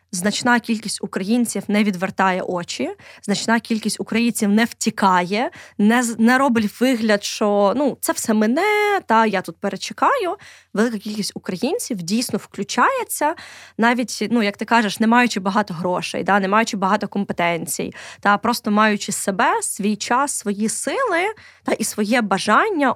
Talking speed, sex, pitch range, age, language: 145 wpm, female, 200-235 Hz, 20-39, Ukrainian